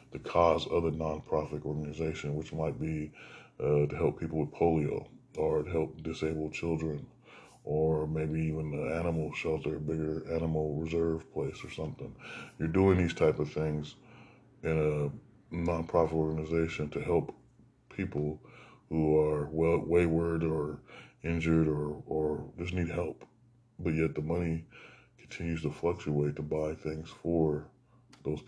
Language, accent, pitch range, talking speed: English, American, 75-80 Hz, 145 wpm